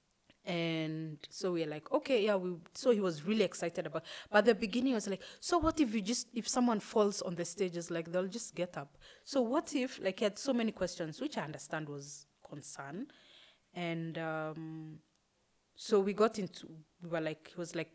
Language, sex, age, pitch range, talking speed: English, female, 30-49, 170-235 Hz, 210 wpm